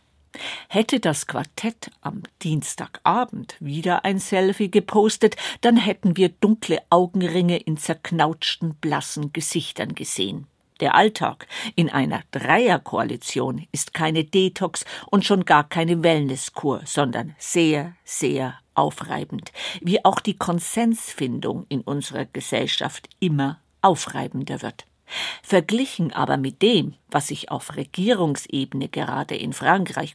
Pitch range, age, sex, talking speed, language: 160-210 Hz, 50-69, female, 115 wpm, German